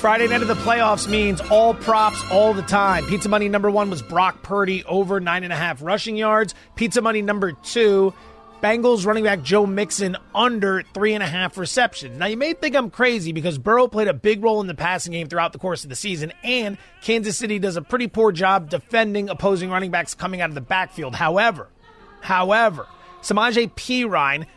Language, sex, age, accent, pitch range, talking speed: English, male, 30-49, American, 180-220 Hz, 190 wpm